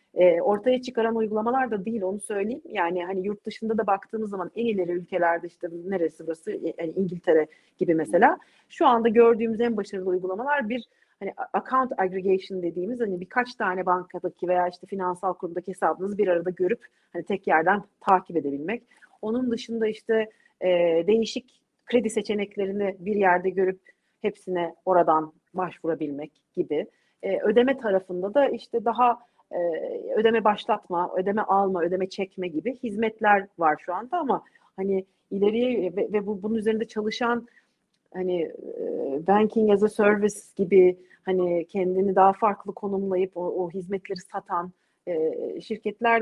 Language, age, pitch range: Turkish, 40-59, 185-230 Hz